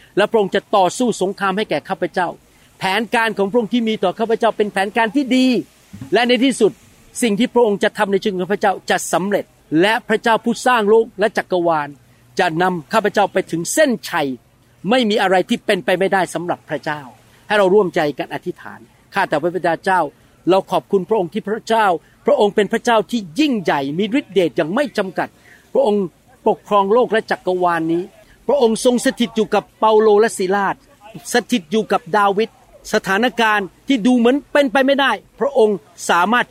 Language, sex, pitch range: Thai, male, 175-225 Hz